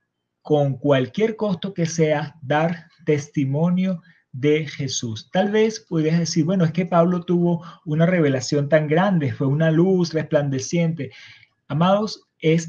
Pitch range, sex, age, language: 140-170 Hz, male, 30-49, Spanish